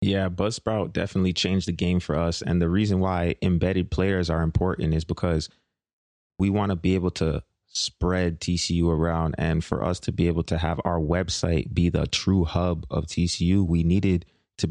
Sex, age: male, 20-39